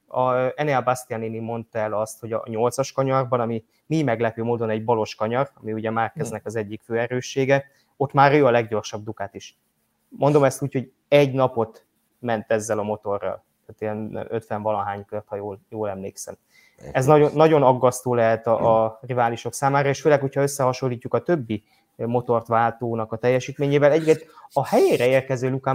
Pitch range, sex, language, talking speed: 110-130 Hz, male, Hungarian, 170 wpm